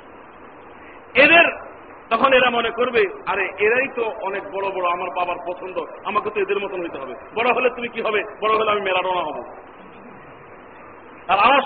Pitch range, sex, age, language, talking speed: 230-275 Hz, male, 50-69, Bengali, 130 wpm